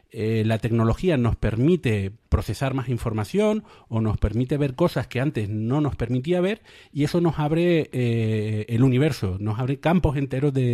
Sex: male